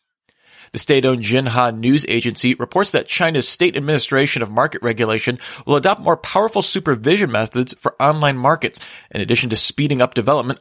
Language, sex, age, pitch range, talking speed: English, male, 40-59, 115-155 Hz, 160 wpm